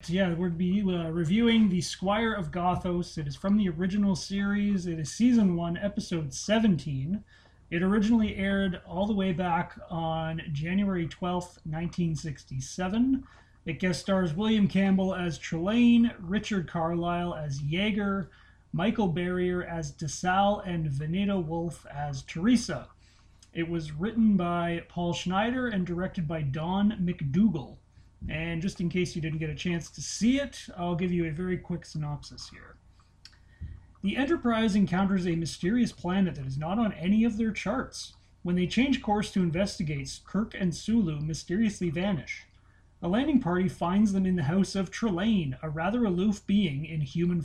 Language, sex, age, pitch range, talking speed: English, male, 30-49, 160-205 Hz, 155 wpm